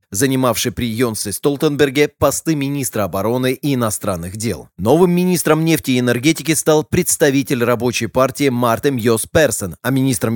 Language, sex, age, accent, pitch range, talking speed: Russian, male, 20-39, native, 115-150 Hz, 140 wpm